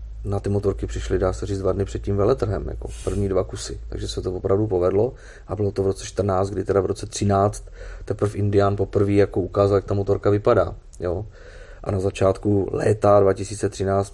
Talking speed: 200 wpm